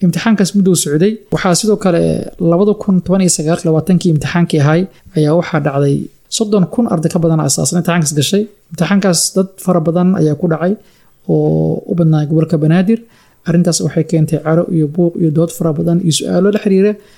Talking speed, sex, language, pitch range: 120 wpm, male, English, 155-185 Hz